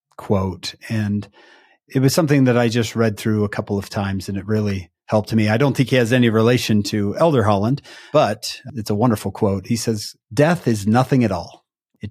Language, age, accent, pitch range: English, 40-59, American, 110-155 Hz